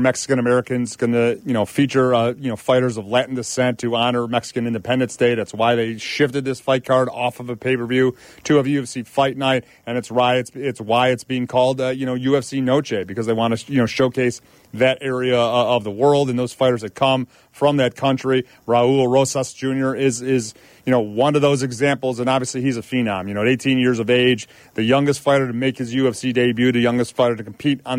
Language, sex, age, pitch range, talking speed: English, male, 30-49, 120-135 Hz, 225 wpm